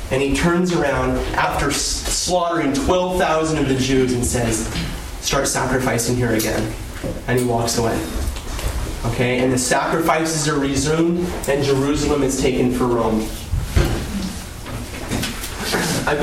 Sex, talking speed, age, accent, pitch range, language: male, 120 wpm, 20-39, American, 120-170 Hz, English